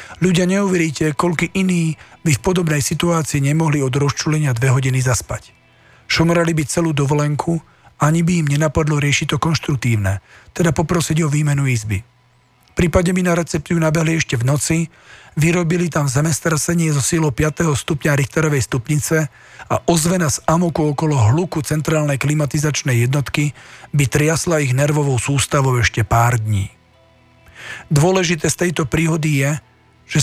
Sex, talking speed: male, 140 wpm